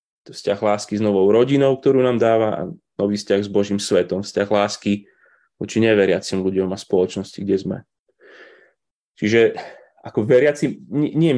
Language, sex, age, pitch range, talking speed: Slovak, male, 20-39, 100-125 Hz, 140 wpm